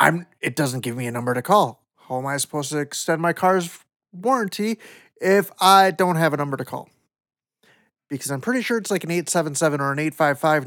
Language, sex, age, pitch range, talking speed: English, male, 30-49, 135-180 Hz, 200 wpm